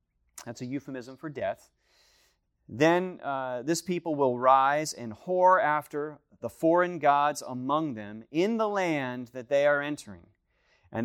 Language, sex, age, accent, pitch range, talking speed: English, male, 30-49, American, 115-160 Hz, 145 wpm